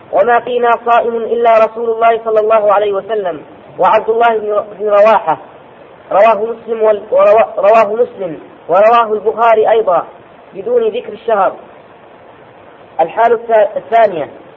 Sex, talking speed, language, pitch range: female, 105 wpm, Arabic, 215-240 Hz